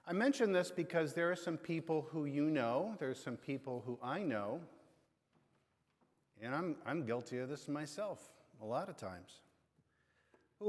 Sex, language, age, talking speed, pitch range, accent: male, English, 50-69, 170 wpm, 130-175 Hz, American